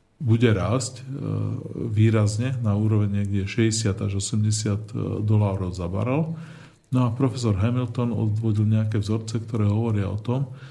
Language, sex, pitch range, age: Slovak, male, 105-125 Hz, 40-59